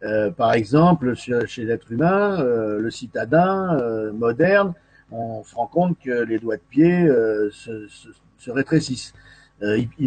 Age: 50-69